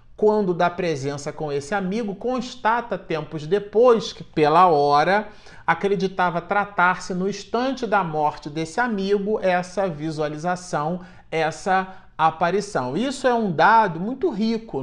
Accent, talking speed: Brazilian, 120 wpm